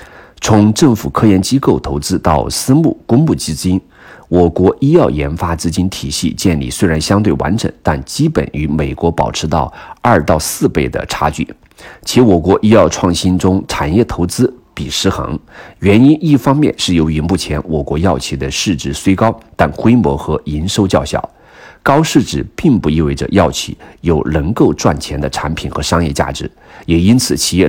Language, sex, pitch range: Chinese, male, 75-105 Hz